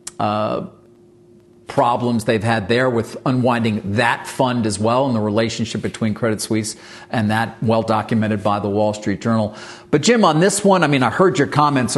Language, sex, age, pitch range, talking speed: English, male, 40-59, 115-145 Hz, 180 wpm